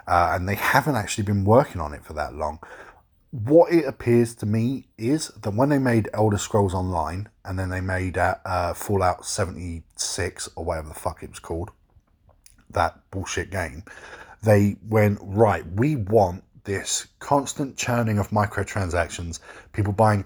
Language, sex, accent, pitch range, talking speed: English, male, British, 90-110 Hz, 165 wpm